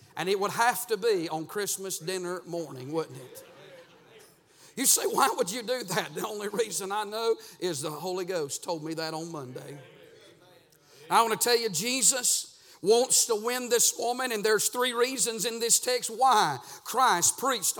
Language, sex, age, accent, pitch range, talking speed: English, male, 50-69, American, 230-290 Hz, 180 wpm